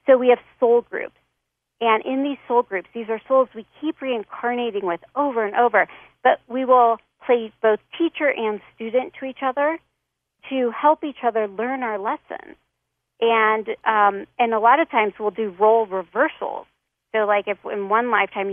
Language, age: English, 40-59